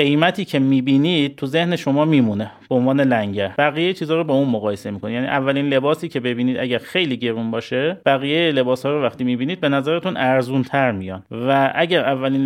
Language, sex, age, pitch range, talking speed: Persian, male, 30-49, 120-160 Hz, 190 wpm